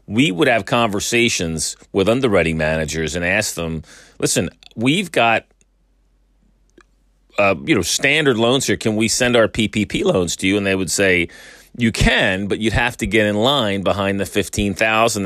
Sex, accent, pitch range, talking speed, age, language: male, American, 80-110 Hz, 170 wpm, 40-59, English